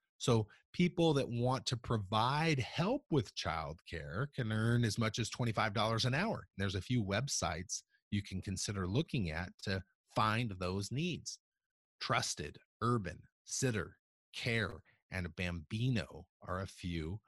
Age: 30-49